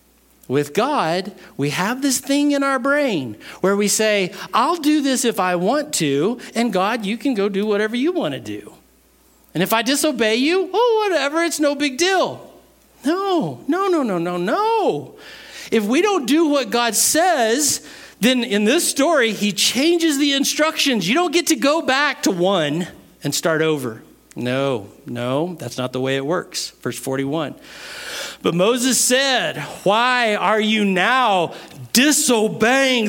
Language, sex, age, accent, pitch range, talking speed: English, male, 50-69, American, 205-310 Hz, 165 wpm